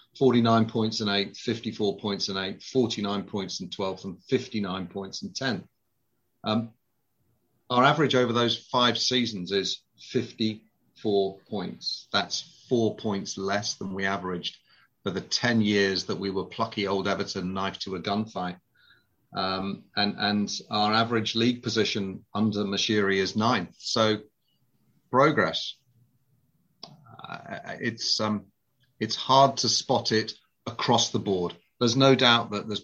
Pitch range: 100-120 Hz